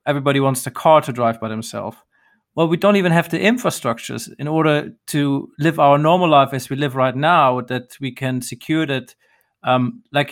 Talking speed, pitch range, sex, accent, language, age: 200 wpm, 135-165 Hz, male, German, English, 40-59